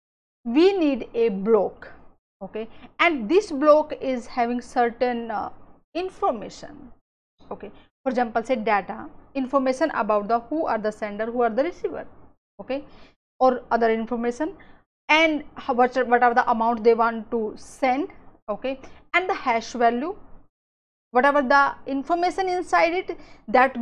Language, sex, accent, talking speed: English, female, Indian, 140 wpm